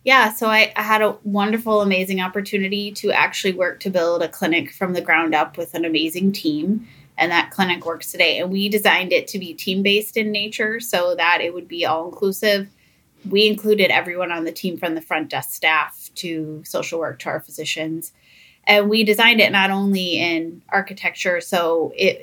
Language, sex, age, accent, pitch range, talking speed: English, female, 20-39, American, 170-205 Hz, 195 wpm